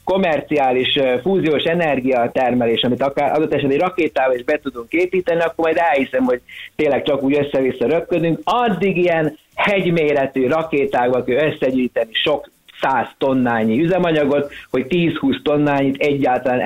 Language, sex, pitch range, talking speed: Hungarian, male, 125-165 Hz, 125 wpm